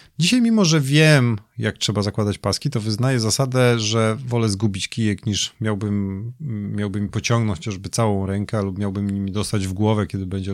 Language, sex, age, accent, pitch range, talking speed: Polish, male, 30-49, native, 100-125 Hz, 160 wpm